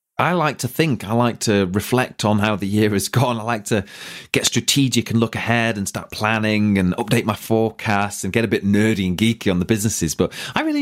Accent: British